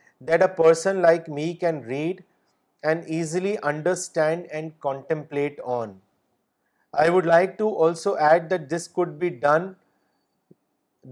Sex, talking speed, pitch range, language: male, 130 wpm, 150-180 Hz, Urdu